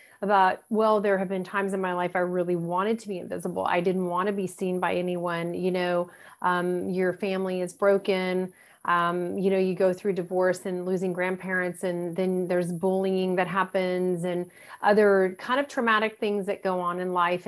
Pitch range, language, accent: 180-205 Hz, English, American